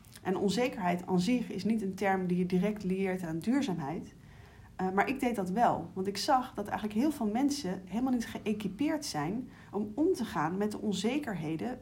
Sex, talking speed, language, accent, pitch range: female, 195 wpm, Dutch, Dutch, 190-240 Hz